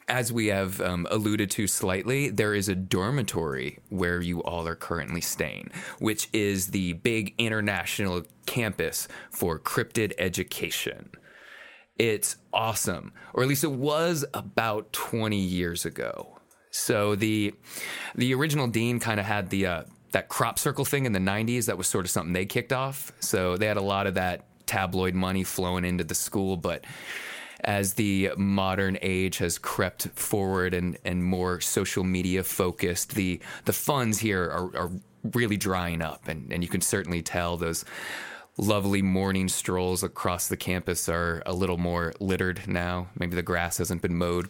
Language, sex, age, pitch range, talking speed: English, male, 20-39, 90-105 Hz, 165 wpm